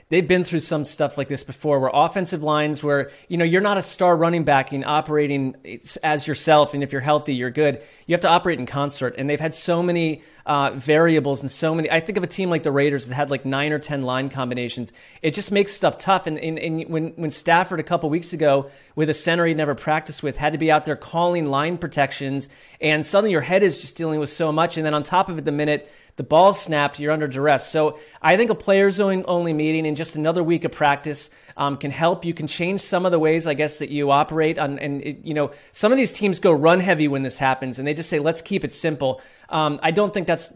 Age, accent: 30-49, American